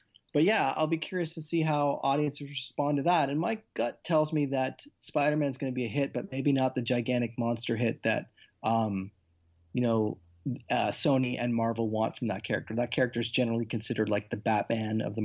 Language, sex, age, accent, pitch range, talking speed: English, male, 30-49, American, 115-140 Hz, 215 wpm